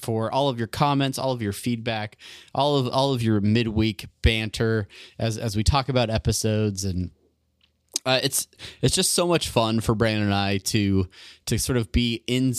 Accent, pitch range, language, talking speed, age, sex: American, 100-120 Hz, English, 190 wpm, 30-49, male